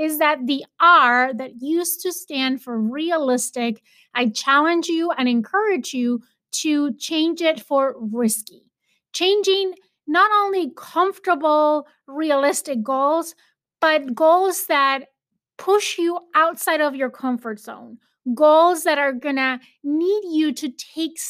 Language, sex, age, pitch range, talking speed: English, female, 30-49, 255-330 Hz, 125 wpm